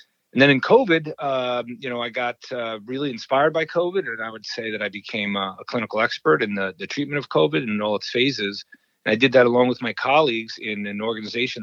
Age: 40-59